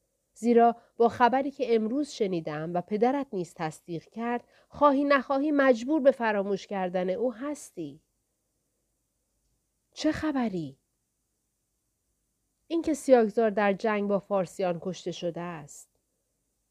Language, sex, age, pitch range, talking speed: Persian, female, 40-59, 185-275 Hz, 110 wpm